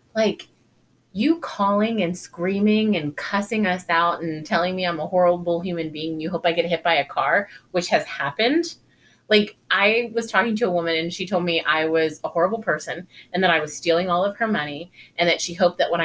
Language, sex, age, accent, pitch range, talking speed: English, female, 30-49, American, 160-215 Hz, 220 wpm